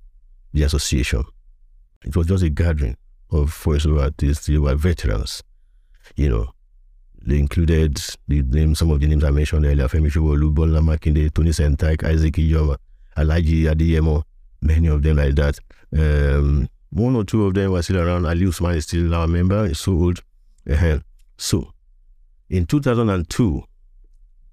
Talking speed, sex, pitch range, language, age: 155 wpm, male, 70-85 Hz, English, 50-69